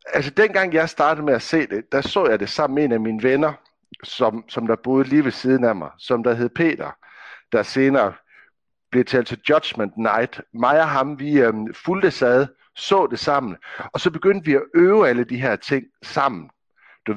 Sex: male